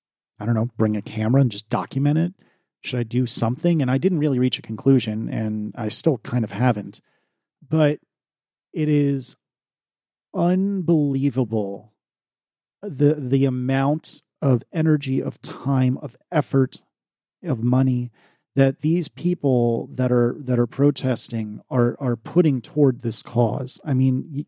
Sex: male